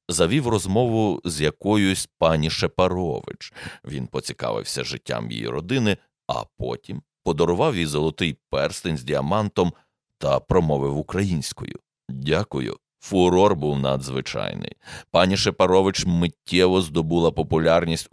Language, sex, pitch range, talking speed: Ukrainian, male, 75-95 Hz, 105 wpm